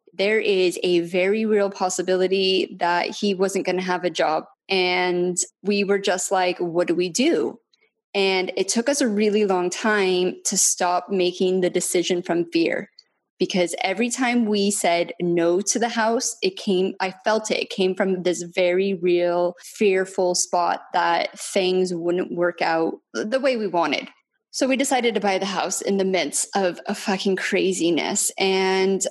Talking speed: 175 wpm